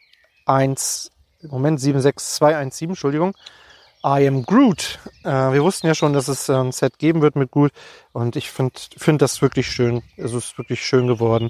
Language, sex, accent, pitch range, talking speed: German, male, German, 120-145 Hz, 160 wpm